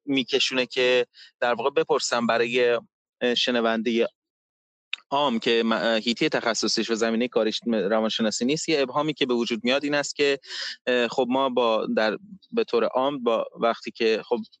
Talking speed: 150 wpm